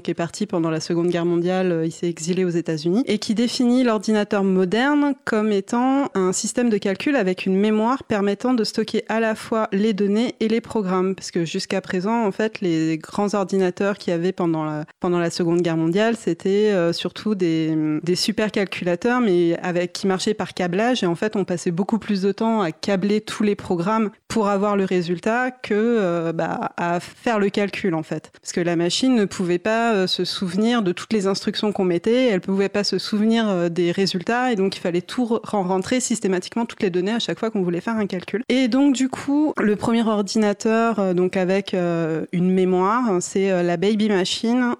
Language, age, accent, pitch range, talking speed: English, 30-49, French, 180-220 Hz, 200 wpm